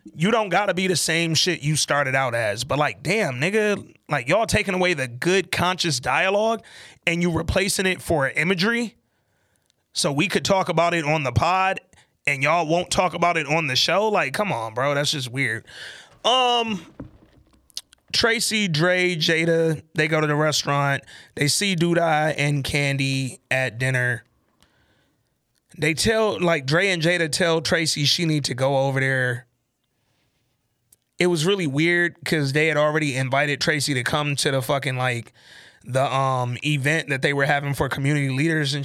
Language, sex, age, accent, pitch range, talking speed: English, male, 30-49, American, 135-175 Hz, 175 wpm